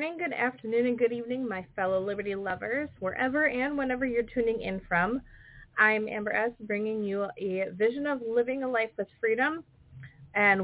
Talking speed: 170 wpm